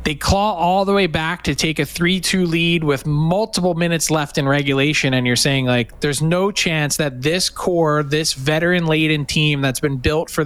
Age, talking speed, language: 20-39, 195 wpm, English